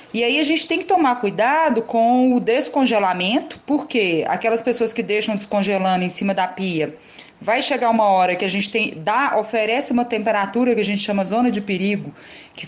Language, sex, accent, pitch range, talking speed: Portuguese, female, Brazilian, 190-250 Hz, 195 wpm